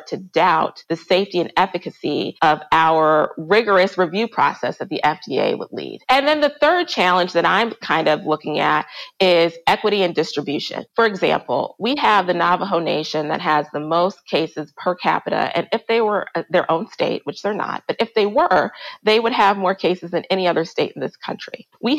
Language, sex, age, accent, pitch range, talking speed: English, female, 30-49, American, 170-220 Hz, 195 wpm